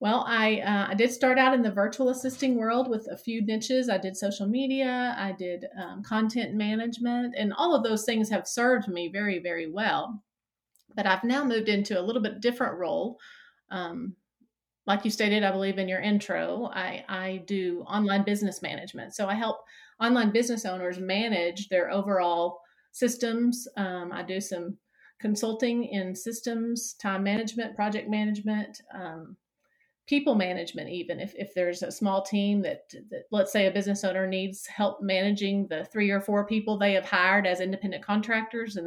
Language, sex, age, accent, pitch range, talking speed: English, female, 40-59, American, 190-235 Hz, 175 wpm